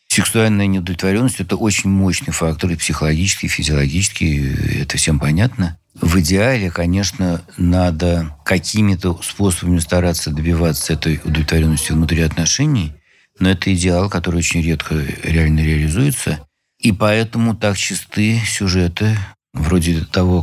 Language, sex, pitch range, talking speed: Russian, male, 80-100 Hz, 115 wpm